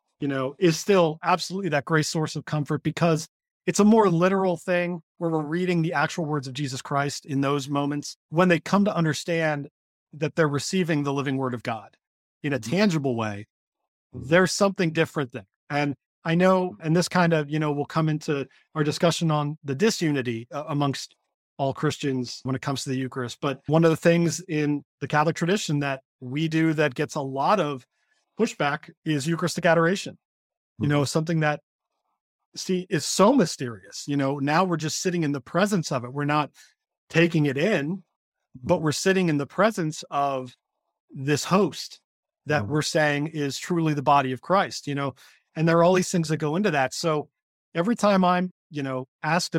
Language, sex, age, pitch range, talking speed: English, male, 30-49, 140-175 Hz, 190 wpm